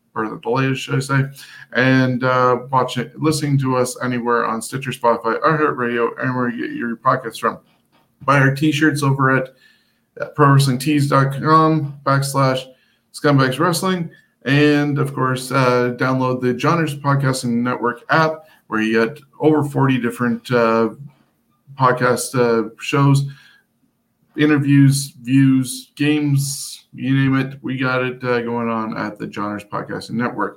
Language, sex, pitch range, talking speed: English, male, 115-140 Hz, 140 wpm